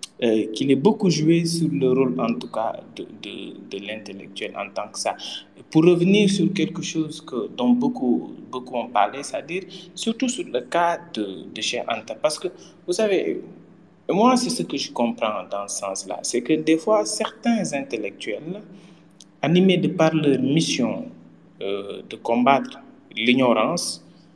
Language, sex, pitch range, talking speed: French, male, 125-190 Hz, 165 wpm